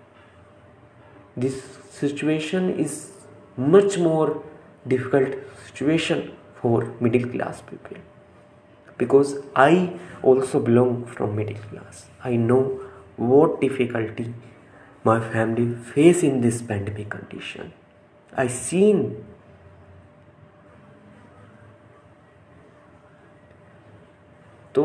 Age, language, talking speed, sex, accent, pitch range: 20-39, Hindi, 75 wpm, male, native, 120-160 Hz